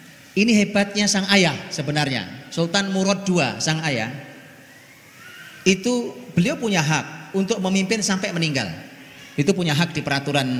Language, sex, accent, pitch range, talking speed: Indonesian, male, native, 135-180 Hz, 130 wpm